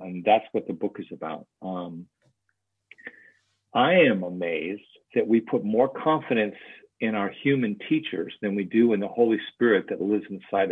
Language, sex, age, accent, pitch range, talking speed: English, male, 50-69, American, 100-120 Hz, 170 wpm